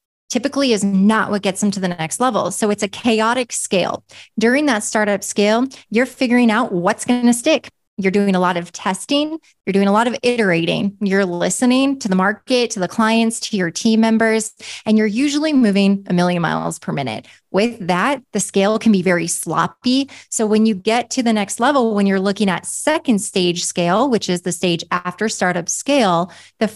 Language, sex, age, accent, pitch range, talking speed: English, female, 20-39, American, 195-250 Hz, 200 wpm